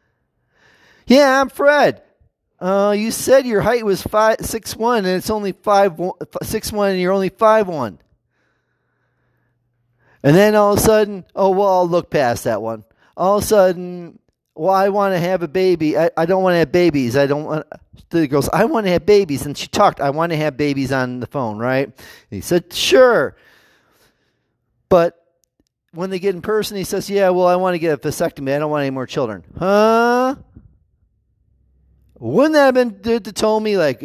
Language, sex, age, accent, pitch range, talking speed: English, male, 30-49, American, 150-220 Hz, 195 wpm